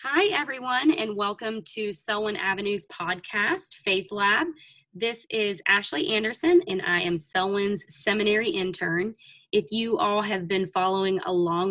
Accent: American